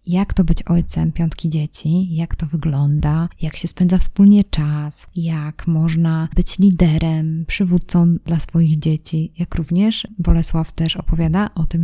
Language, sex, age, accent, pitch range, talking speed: Polish, female, 20-39, native, 160-180 Hz, 145 wpm